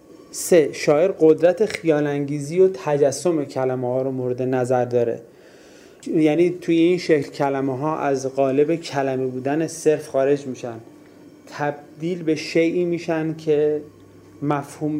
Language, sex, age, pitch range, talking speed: Persian, male, 30-49, 130-150 Hz, 125 wpm